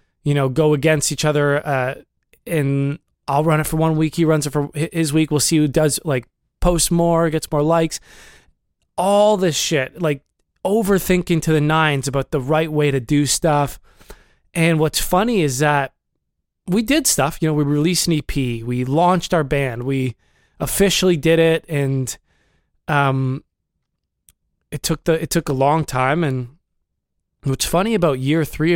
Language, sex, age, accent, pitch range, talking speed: English, male, 20-39, American, 135-165 Hz, 175 wpm